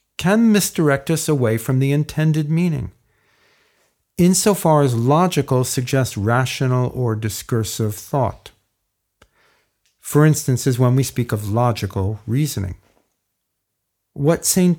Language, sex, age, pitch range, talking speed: English, male, 50-69, 115-160 Hz, 110 wpm